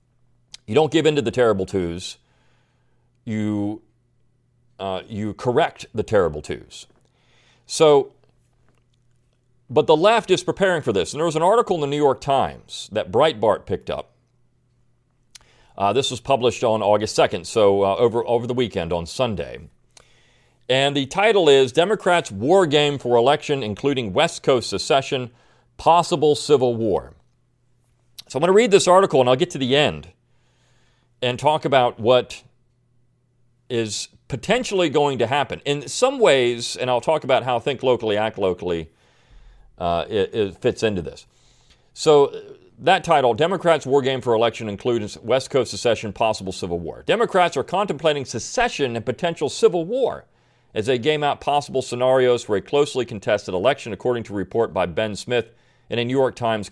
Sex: male